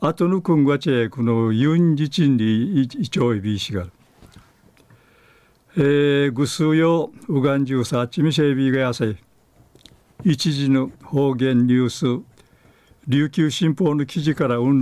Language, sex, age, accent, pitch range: Japanese, male, 60-79, native, 125-165 Hz